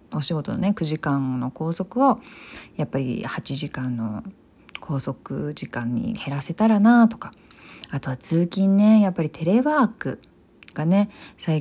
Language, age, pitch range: Japanese, 40-59, 145-200 Hz